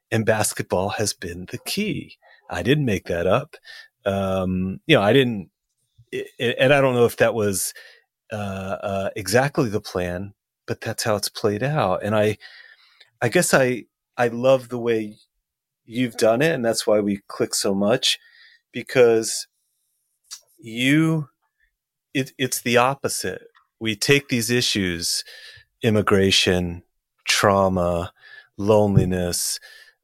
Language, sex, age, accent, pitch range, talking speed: English, male, 30-49, American, 100-135 Hz, 135 wpm